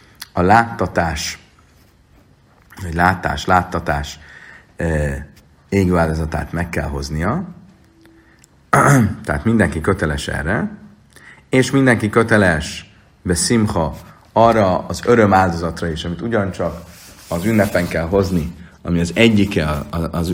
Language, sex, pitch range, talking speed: Hungarian, male, 80-100 Hz, 100 wpm